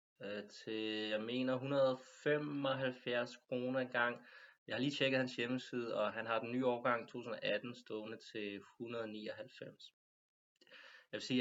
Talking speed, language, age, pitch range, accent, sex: 120 wpm, Danish, 20-39, 100-115 Hz, native, male